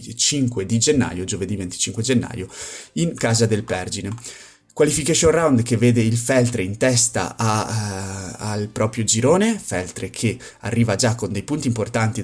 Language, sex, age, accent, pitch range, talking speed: Italian, male, 30-49, native, 105-125 Hz, 155 wpm